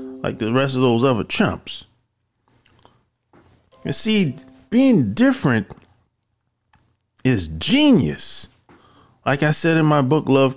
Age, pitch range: 40-59, 115-165 Hz